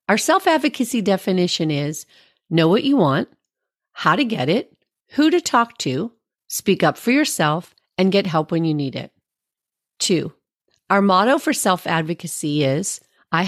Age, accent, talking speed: 40-59, American, 150 wpm